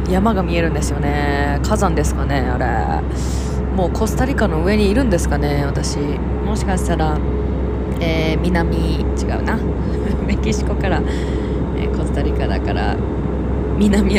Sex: female